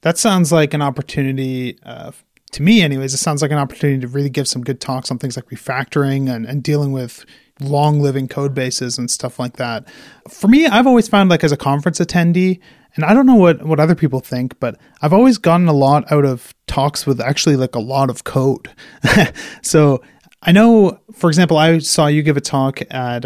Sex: male